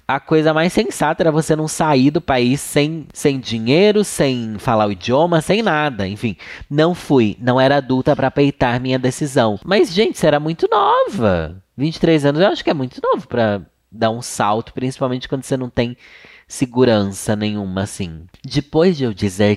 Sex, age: male, 20-39